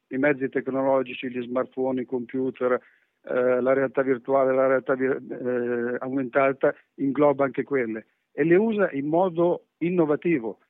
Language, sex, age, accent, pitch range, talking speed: Italian, male, 50-69, native, 130-155 Hz, 135 wpm